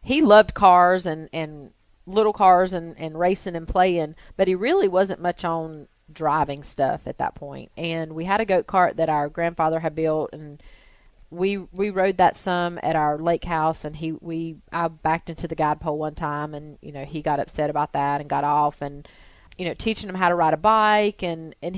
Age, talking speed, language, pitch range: 30-49, 215 wpm, English, 155-185 Hz